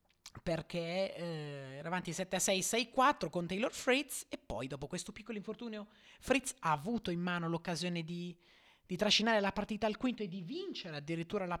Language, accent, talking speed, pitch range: Italian, native, 170 wpm, 155-190 Hz